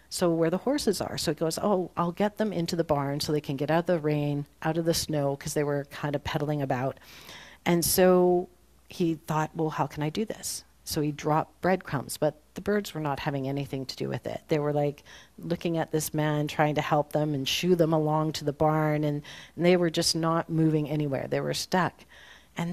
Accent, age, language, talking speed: American, 40-59, English, 235 wpm